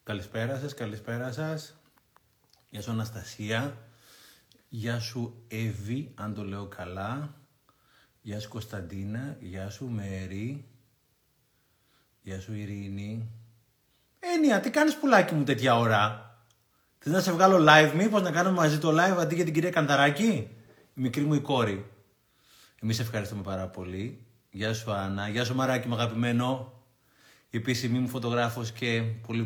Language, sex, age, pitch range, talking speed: Greek, male, 30-49, 110-145 Hz, 135 wpm